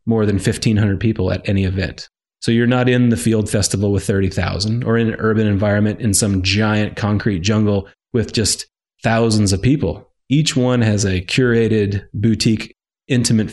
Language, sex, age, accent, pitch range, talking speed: English, male, 30-49, American, 100-115 Hz, 170 wpm